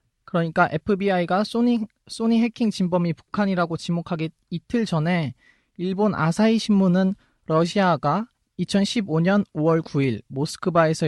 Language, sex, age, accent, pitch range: Korean, male, 20-39, native, 155-200 Hz